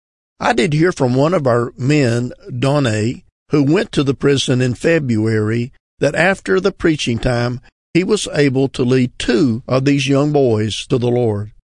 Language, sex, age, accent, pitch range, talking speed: English, male, 50-69, American, 120-150 Hz, 175 wpm